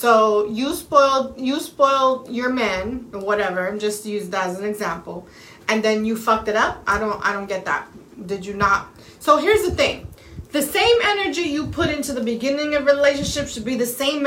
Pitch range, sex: 220-280 Hz, female